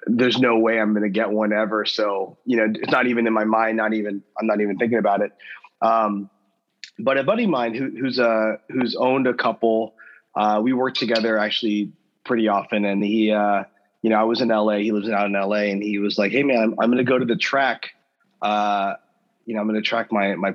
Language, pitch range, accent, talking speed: English, 105-120 Hz, American, 240 wpm